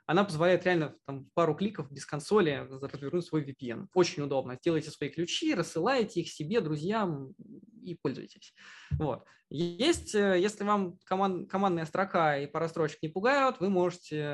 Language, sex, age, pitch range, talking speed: Russian, male, 20-39, 150-195 Hz, 140 wpm